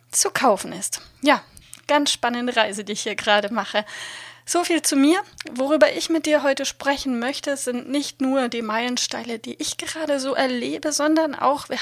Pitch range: 240-300 Hz